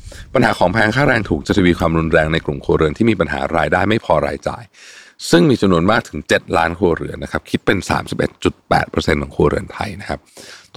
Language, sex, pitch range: Thai, male, 80-105 Hz